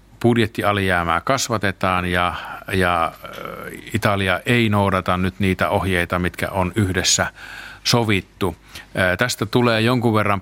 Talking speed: 105 wpm